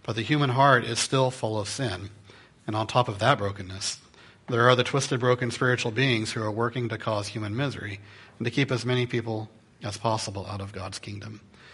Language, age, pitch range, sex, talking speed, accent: English, 40-59, 100-125 Hz, male, 210 wpm, American